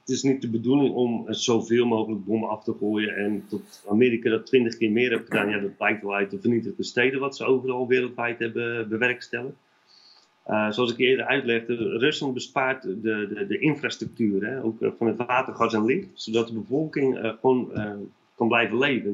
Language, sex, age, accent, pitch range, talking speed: Dutch, male, 40-59, Dutch, 105-130 Hz, 200 wpm